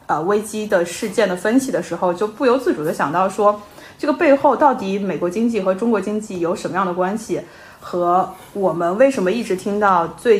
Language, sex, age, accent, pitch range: Chinese, female, 20-39, native, 175-225 Hz